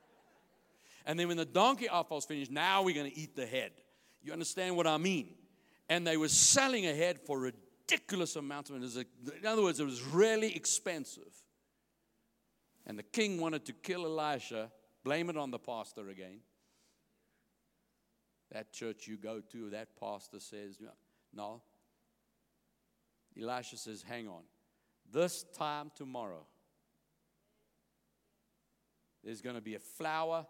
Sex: male